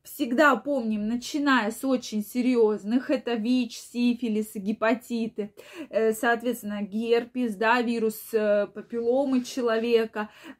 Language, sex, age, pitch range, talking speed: Russian, female, 20-39, 225-285 Hz, 95 wpm